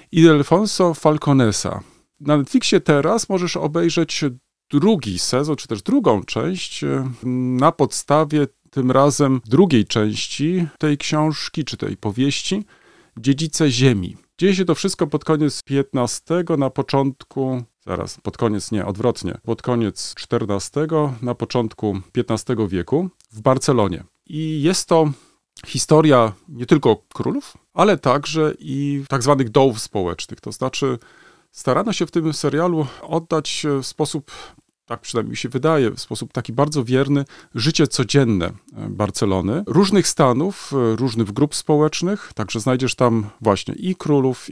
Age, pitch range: 40-59, 120-160 Hz